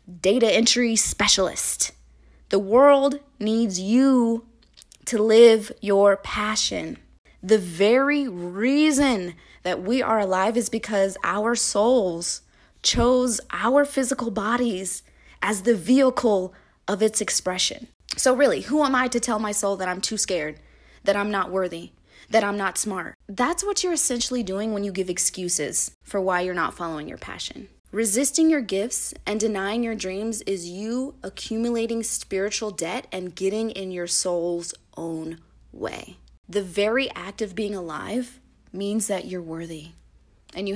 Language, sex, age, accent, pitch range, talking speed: English, female, 20-39, American, 185-235 Hz, 145 wpm